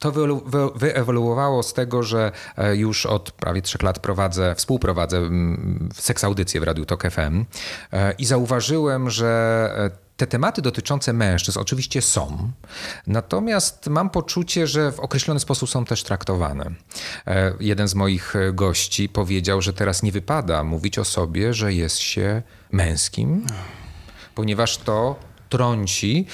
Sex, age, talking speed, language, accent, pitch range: male, 30-49, 125 wpm, Polish, native, 95-130 Hz